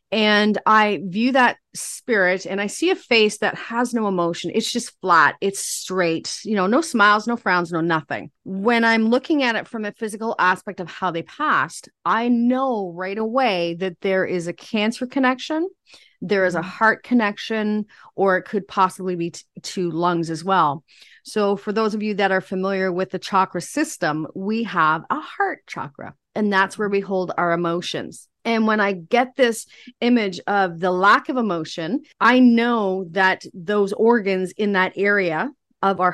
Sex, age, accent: female, 30-49, American